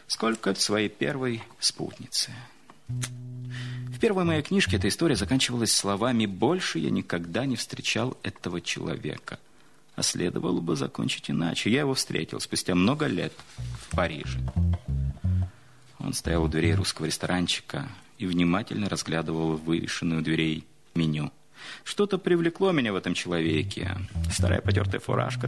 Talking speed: 125 wpm